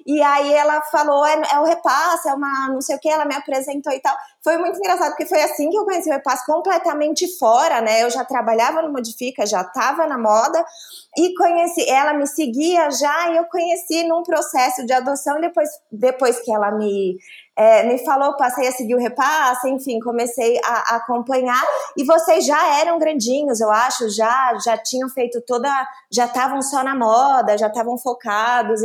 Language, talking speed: Portuguese, 195 wpm